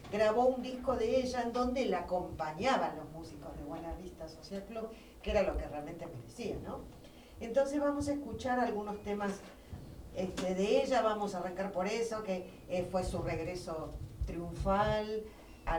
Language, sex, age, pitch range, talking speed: Spanish, female, 50-69, 170-215 Hz, 160 wpm